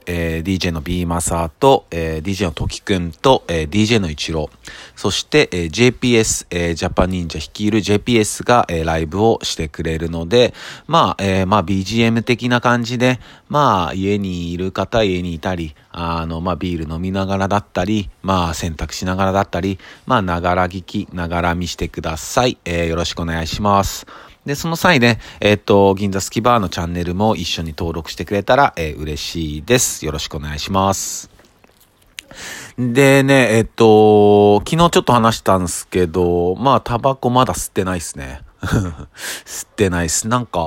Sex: male